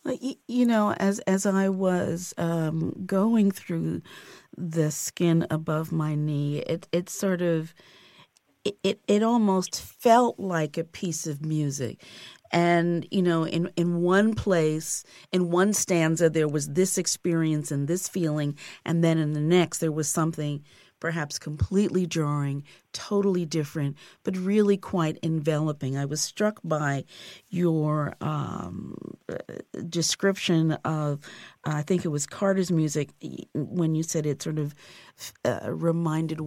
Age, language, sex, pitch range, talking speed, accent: 40-59, English, female, 150-180 Hz, 140 wpm, American